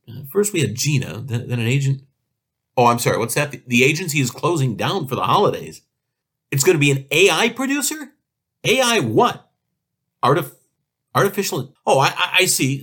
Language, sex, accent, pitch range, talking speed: English, male, American, 125-190 Hz, 180 wpm